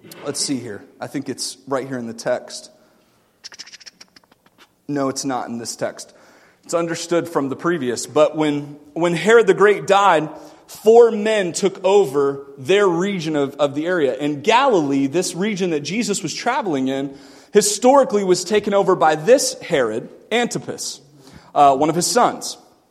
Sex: male